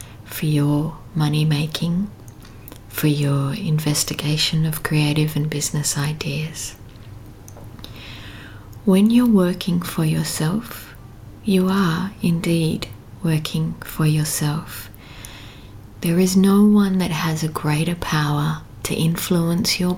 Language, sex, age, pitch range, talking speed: English, female, 30-49, 115-160 Hz, 105 wpm